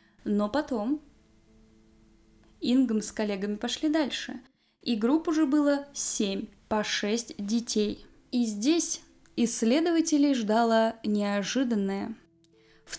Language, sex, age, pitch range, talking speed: Russian, female, 20-39, 210-275 Hz, 95 wpm